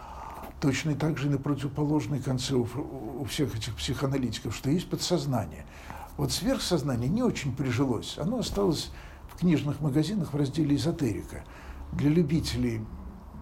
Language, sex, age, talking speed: Russian, male, 60-79, 135 wpm